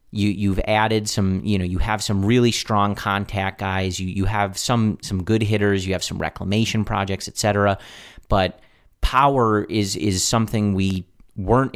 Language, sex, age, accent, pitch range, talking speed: English, male, 30-49, American, 95-115 Hz, 170 wpm